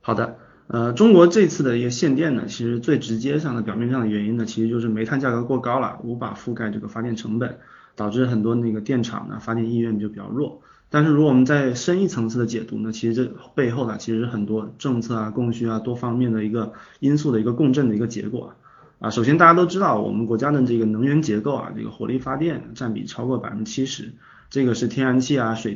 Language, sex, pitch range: Chinese, male, 110-135 Hz